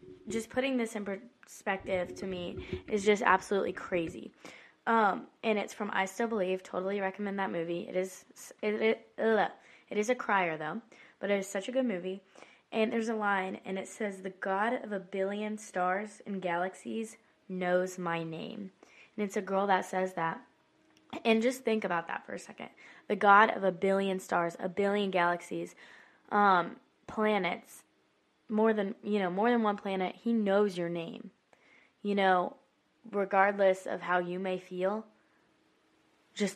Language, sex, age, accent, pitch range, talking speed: English, female, 20-39, American, 185-215 Hz, 170 wpm